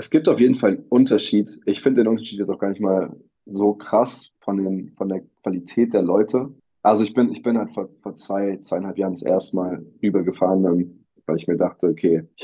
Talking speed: 220 wpm